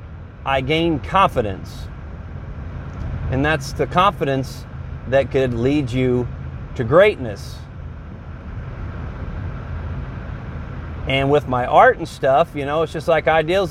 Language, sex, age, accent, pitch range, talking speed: English, male, 30-49, American, 125-165 Hz, 110 wpm